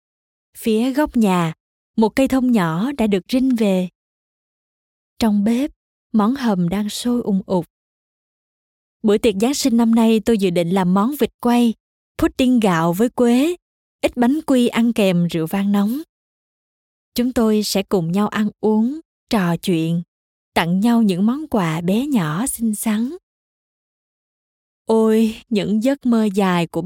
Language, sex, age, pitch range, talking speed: Vietnamese, female, 20-39, 185-240 Hz, 150 wpm